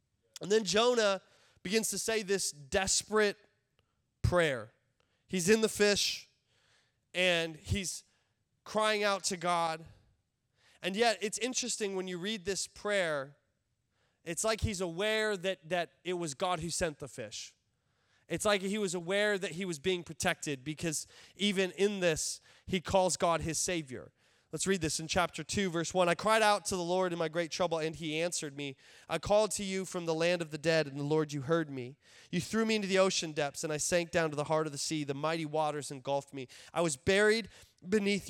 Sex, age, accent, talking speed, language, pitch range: male, 20-39, American, 195 wpm, English, 145-190 Hz